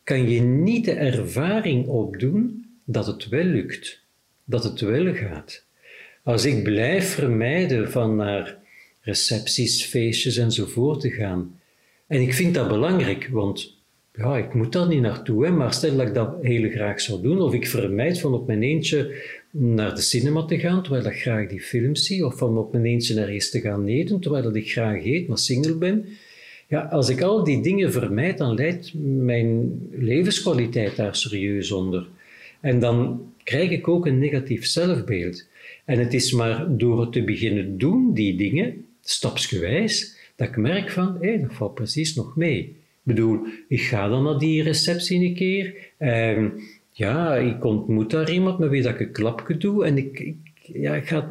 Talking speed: 180 wpm